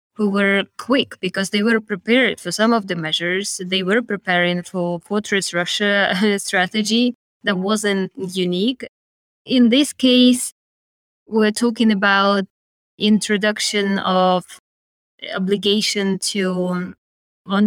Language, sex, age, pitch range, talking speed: English, female, 20-39, 190-225 Hz, 110 wpm